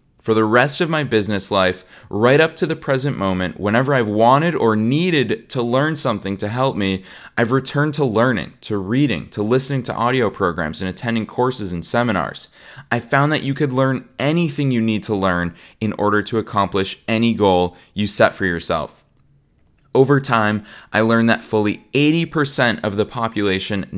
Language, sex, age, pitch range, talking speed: English, male, 20-39, 100-130 Hz, 180 wpm